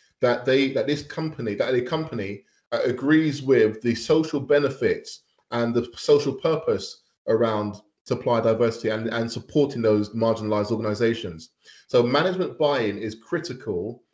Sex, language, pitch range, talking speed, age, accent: male, English, 110-145 Hz, 135 wpm, 20-39, British